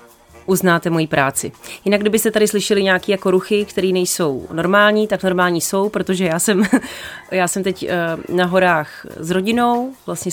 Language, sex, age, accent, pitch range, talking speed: Czech, female, 30-49, native, 170-205 Hz, 155 wpm